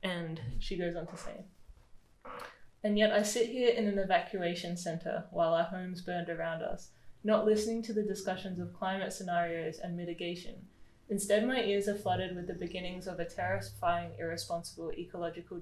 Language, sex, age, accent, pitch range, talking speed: English, female, 10-29, Australian, 170-195 Hz, 170 wpm